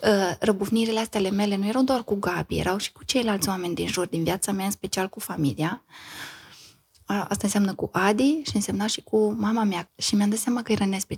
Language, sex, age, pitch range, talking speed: Romanian, female, 20-39, 180-215 Hz, 220 wpm